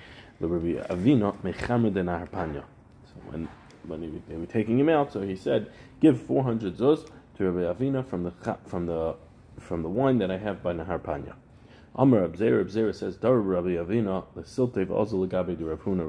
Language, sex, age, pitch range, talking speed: English, male, 40-59, 85-115 Hz, 155 wpm